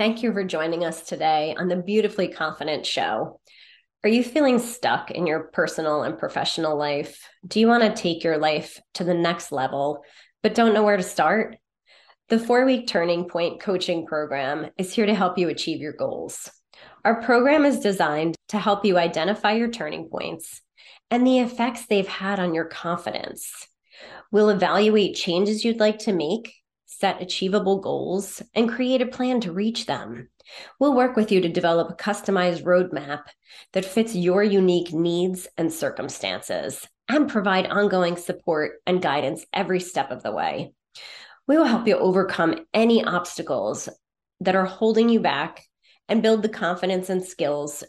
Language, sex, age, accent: English, female, 20-39, American